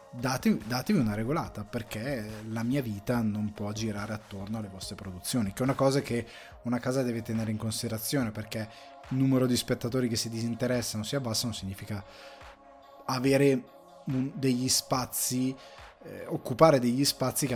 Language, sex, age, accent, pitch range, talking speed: Italian, male, 20-39, native, 110-135 Hz, 150 wpm